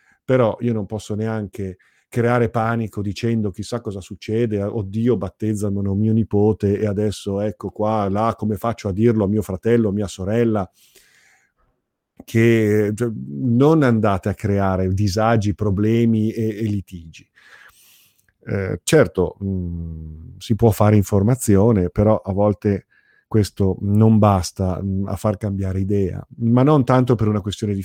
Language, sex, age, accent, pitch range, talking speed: Italian, male, 50-69, native, 95-115 Hz, 140 wpm